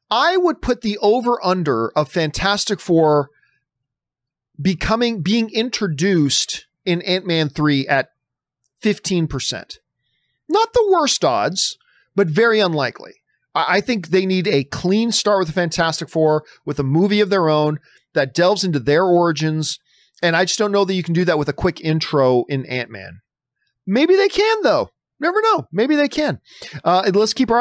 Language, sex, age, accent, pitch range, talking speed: English, male, 40-59, American, 155-215 Hz, 160 wpm